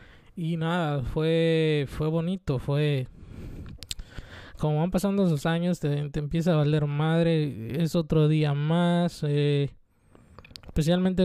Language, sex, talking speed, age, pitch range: English, male, 125 wpm, 20-39, 145-170 Hz